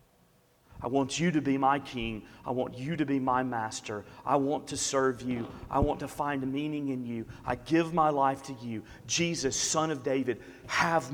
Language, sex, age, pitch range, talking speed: English, male, 40-59, 115-140 Hz, 200 wpm